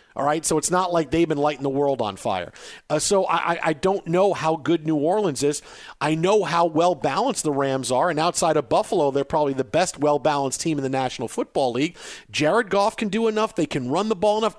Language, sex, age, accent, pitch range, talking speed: English, male, 40-59, American, 160-220 Hz, 235 wpm